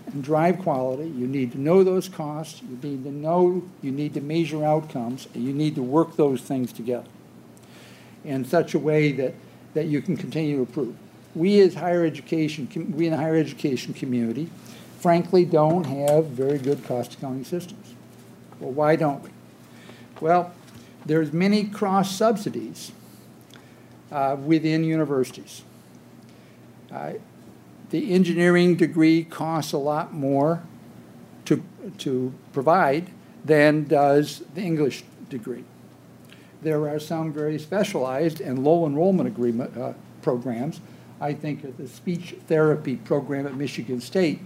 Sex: male